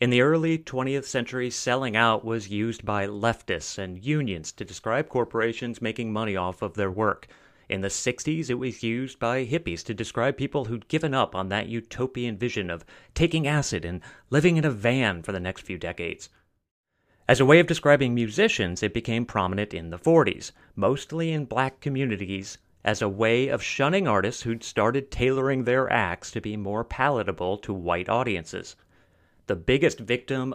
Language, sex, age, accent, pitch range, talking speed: English, male, 30-49, American, 105-130 Hz, 175 wpm